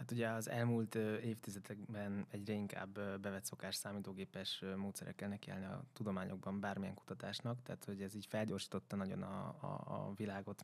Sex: male